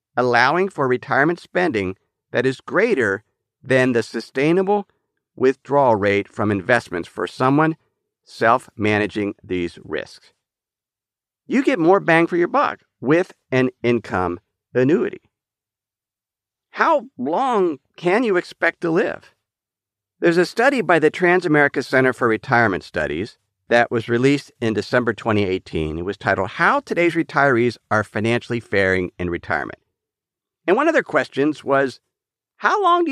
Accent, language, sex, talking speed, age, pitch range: American, English, male, 130 wpm, 50-69, 110-175 Hz